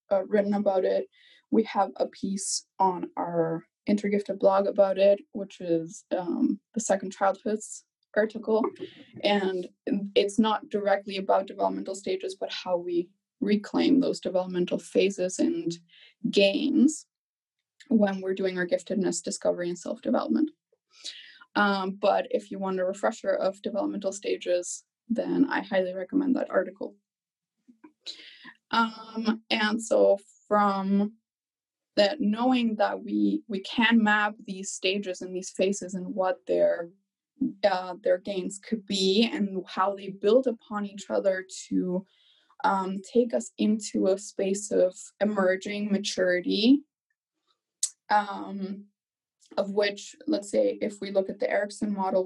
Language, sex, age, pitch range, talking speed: English, female, 20-39, 190-230 Hz, 130 wpm